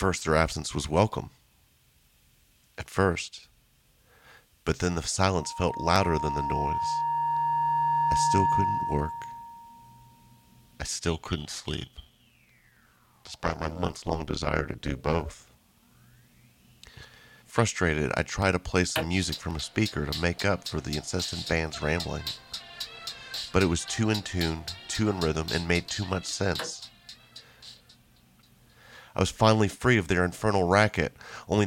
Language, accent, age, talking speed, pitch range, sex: English, American, 40-59, 135 wpm, 80-105 Hz, male